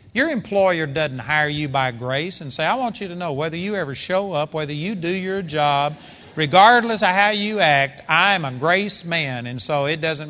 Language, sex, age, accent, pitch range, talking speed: English, male, 40-59, American, 155-220 Hz, 215 wpm